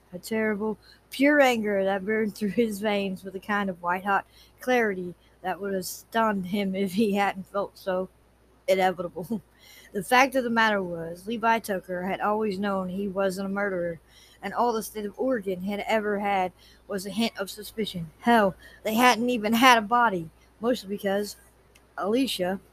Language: English